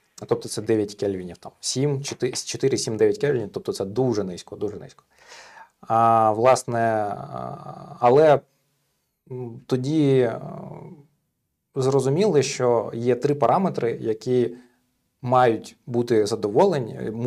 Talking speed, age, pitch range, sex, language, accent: 90 wpm, 20-39, 110-135 Hz, male, Ukrainian, native